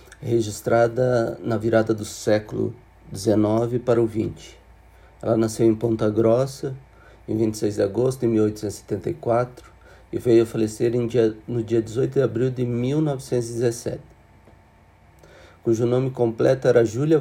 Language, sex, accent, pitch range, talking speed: Portuguese, male, Brazilian, 110-125 Hz, 135 wpm